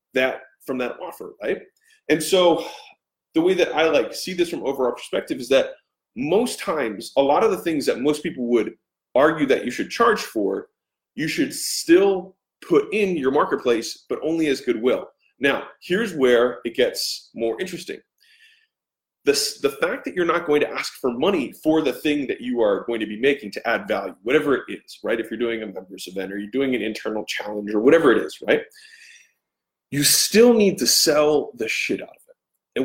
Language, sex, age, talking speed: English, male, 30-49, 200 wpm